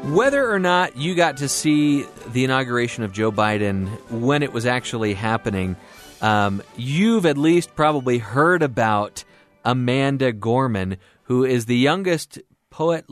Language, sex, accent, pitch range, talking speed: English, male, American, 105-135 Hz, 140 wpm